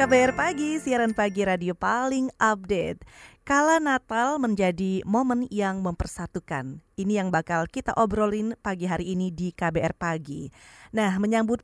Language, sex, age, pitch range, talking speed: Indonesian, female, 30-49, 180-245 Hz, 135 wpm